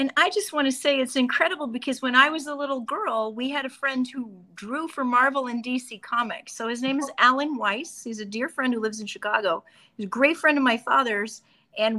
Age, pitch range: 40-59, 215-270 Hz